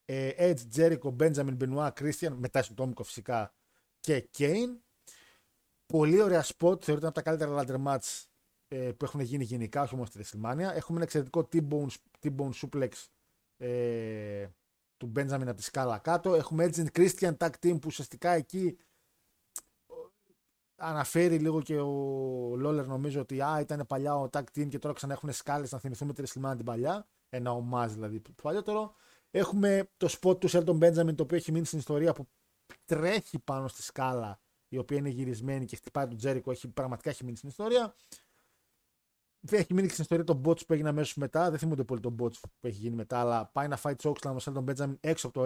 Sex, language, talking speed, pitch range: male, Greek, 180 wpm, 130-165 Hz